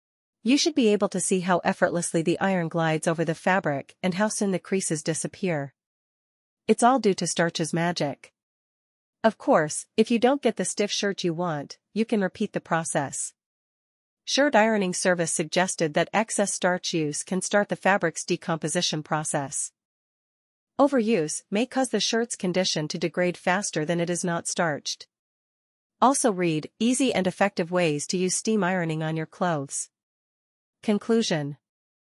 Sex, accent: female, American